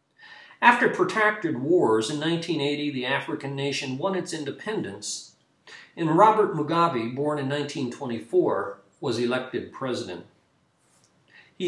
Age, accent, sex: 50-69, American, male